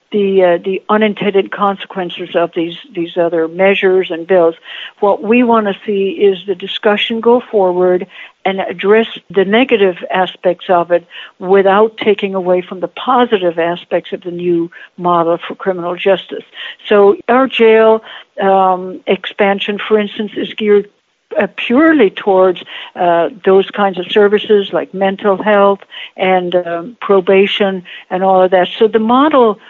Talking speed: 145 wpm